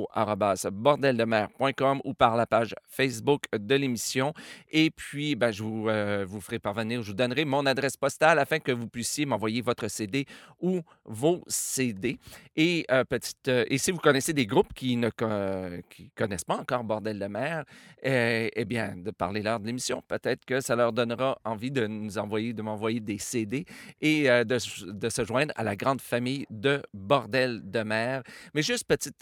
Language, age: French, 40-59